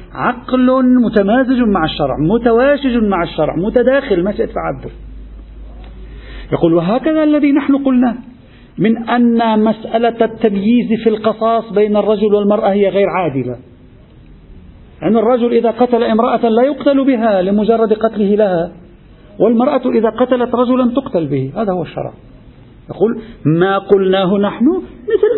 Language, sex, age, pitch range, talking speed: Arabic, male, 50-69, 155-240 Hz, 125 wpm